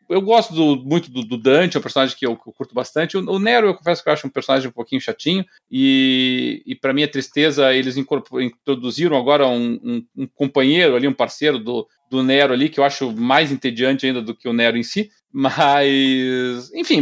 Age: 40-59